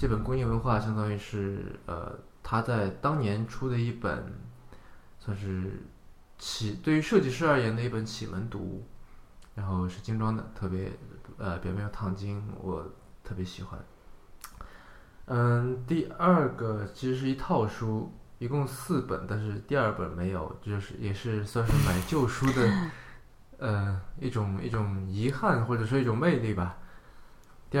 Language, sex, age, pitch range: Chinese, male, 20-39, 95-120 Hz